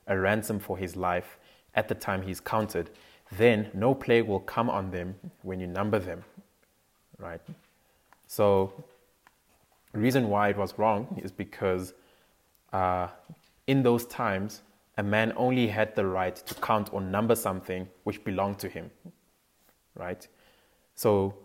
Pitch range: 90-110 Hz